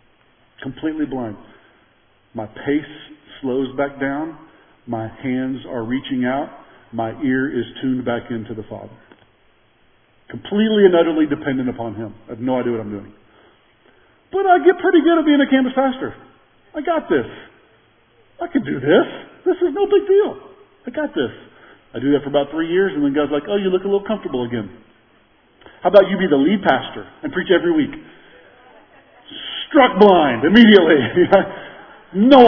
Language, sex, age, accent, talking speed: English, male, 40-59, American, 170 wpm